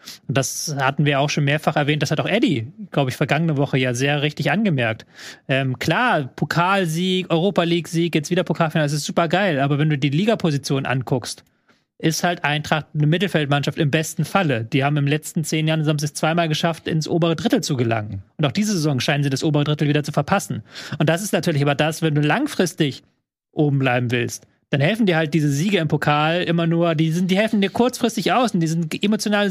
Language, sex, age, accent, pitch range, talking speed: German, male, 30-49, German, 150-185 Hz, 215 wpm